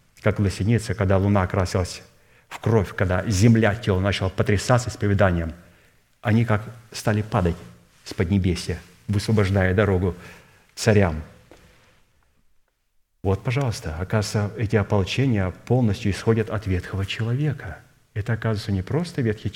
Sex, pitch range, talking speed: male, 100-120 Hz, 115 wpm